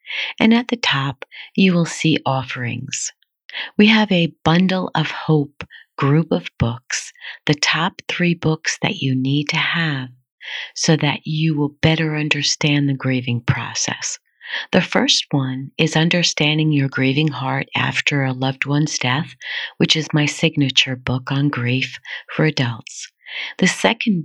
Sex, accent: female, American